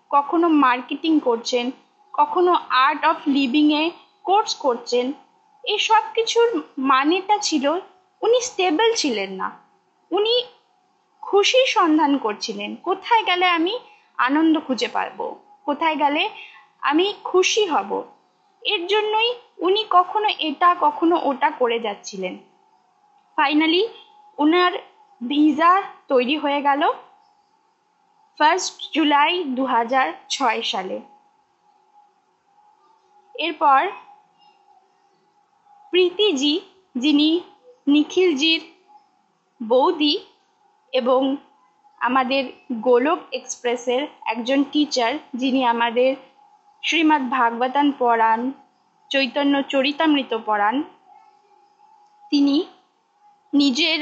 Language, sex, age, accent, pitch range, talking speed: Bengali, female, 20-39, native, 280-415 Hz, 80 wpm